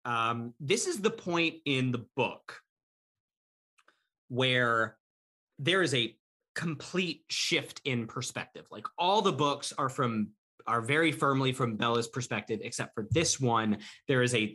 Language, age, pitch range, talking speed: English, 30-49, 115-155 Hz, 145 wpm